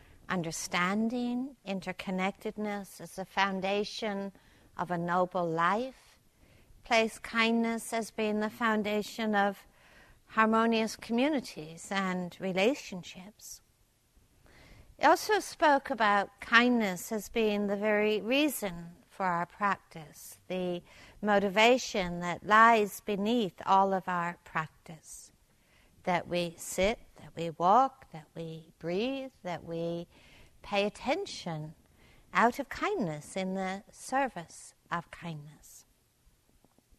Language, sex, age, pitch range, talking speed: English, female, 60-79, 175-225 Hz, 100 wpm